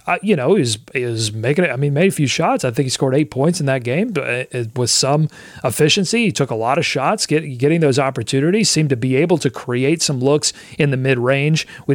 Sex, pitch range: male, 130-160 Hz